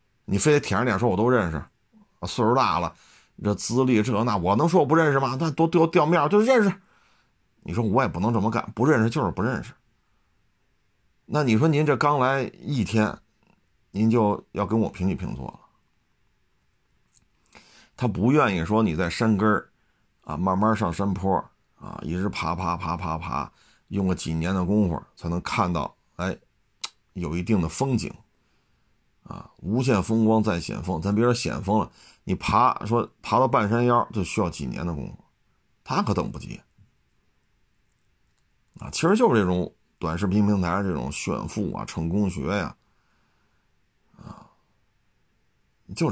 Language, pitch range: Chinese, 95-120 Hz